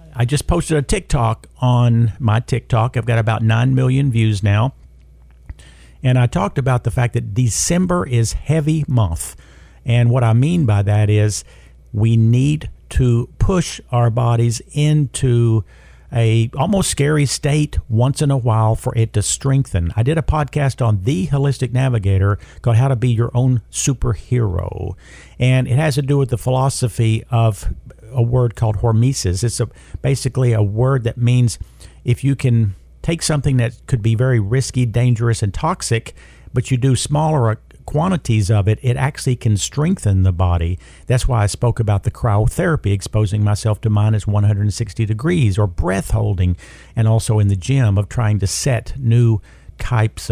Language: English